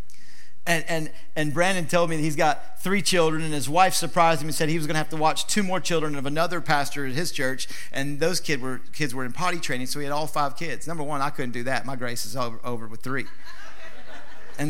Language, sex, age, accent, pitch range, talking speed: English, male, 50-69, American, 150-190 Hz, 255 wpm